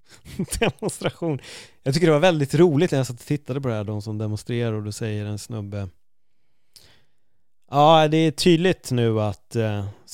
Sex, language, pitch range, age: male, Swedish, 105-135 Hz, 30-49